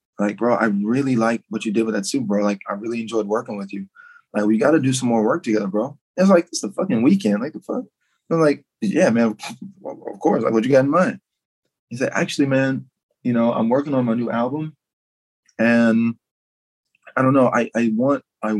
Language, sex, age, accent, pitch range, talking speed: English, male, 20-39, American, 110-150 Hz, 225 wpm